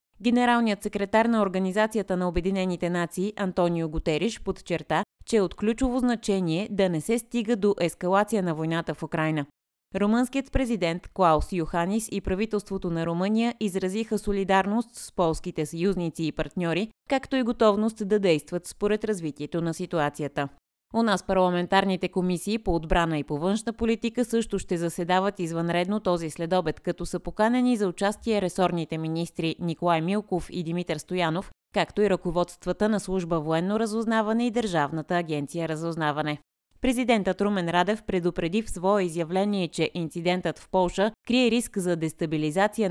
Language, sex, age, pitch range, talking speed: Bulgarian, female, 20-39, 165-210 Hz, 145 wpm